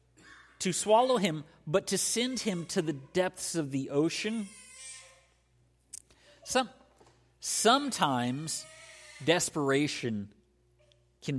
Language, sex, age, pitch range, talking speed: English, male, 50-69, 100-145 Hz, 85 wpm